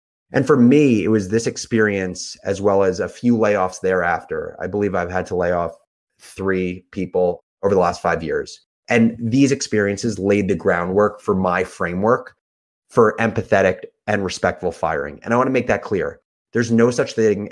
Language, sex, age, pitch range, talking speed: English, male, 30-49, 90-115 Hz, 180 wpm